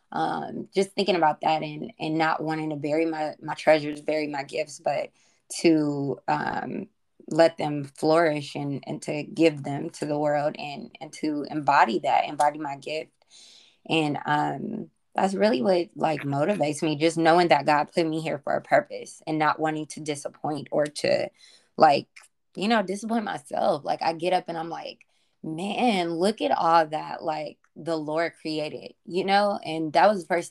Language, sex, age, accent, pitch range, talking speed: English, female, 20-39, American, 150-170 Hz, 180 wpm